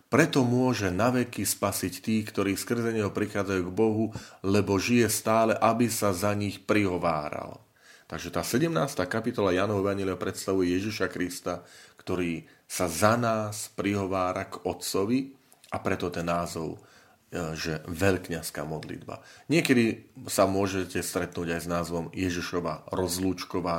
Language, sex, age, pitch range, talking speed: Slovak, male, 30-49, 90-105 Hz, 130 wpm